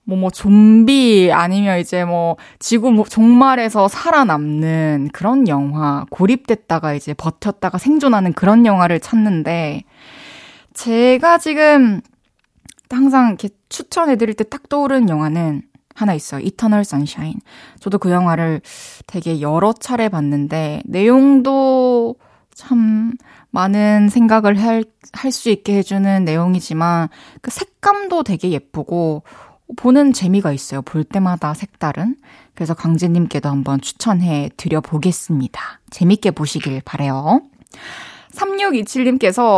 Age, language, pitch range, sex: 20-39, Korean, 170-255 Hz, female